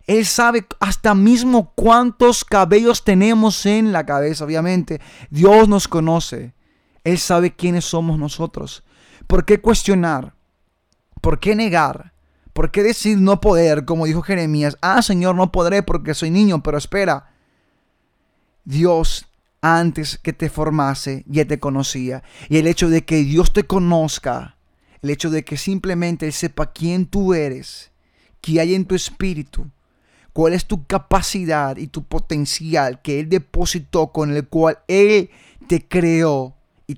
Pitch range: 150-190 Hz